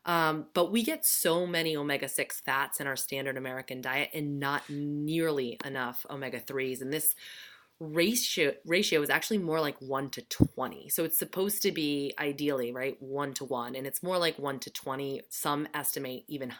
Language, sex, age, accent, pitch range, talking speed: English, female, 20-39, American, 140-170 Hz, 175 wpm